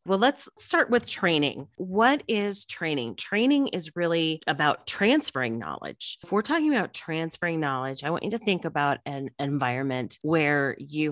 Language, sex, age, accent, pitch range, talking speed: English, female, 30-49, American, 140-185 Hz, 160 wpm